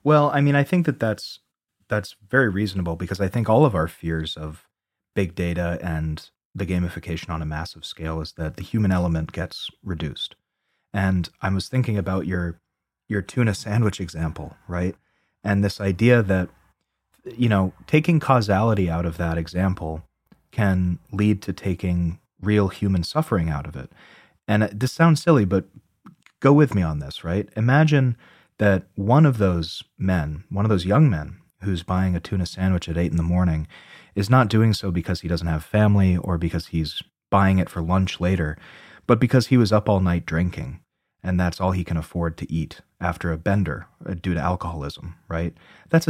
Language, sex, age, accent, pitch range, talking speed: English, male, 30-49, American, 85-110 Hz, 180 wpm